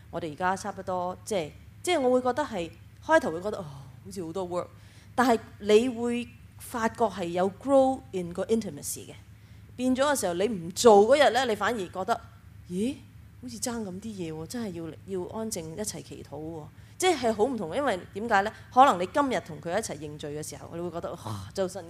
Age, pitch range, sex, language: 20-39, 160-220 Hz, female, English